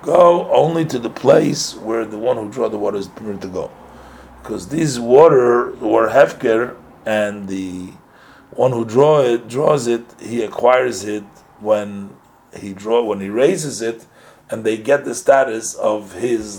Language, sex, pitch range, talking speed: English, male, 100-135 Hz, 165 wpm